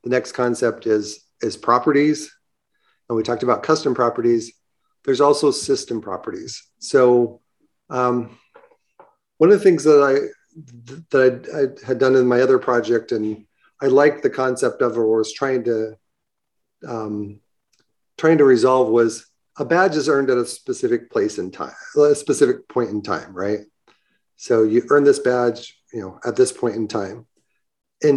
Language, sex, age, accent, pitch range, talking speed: English, male, 40-59, American, 115-155 Hz, 165 wpm